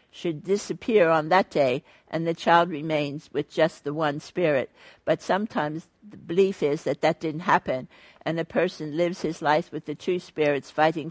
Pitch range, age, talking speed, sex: 155-180 Hz, 60-79, 185 wpm, female